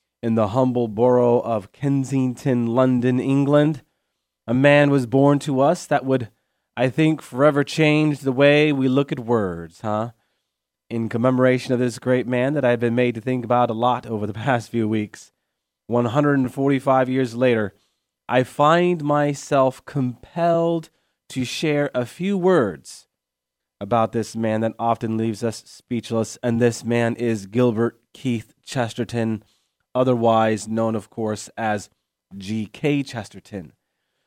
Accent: American